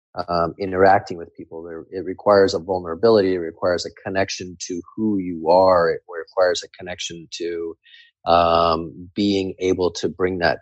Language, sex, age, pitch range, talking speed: English, male, 30-49, 85-105 Hz, 160 wpm